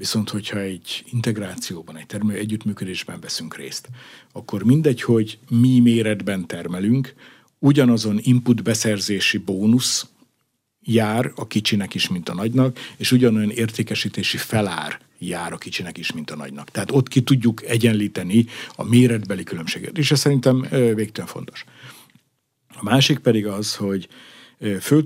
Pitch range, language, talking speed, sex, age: 105-125 Hz, Hungarian, 135 wpm, male, 60-79